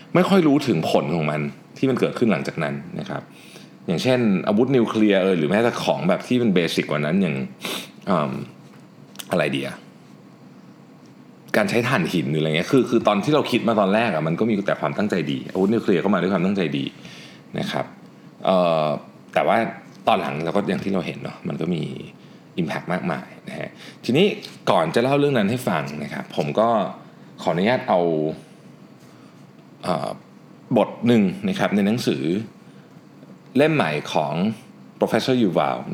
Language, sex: Thai, male